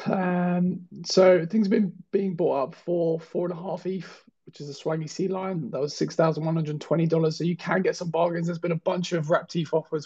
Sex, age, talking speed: male, 20-39, 250 wpm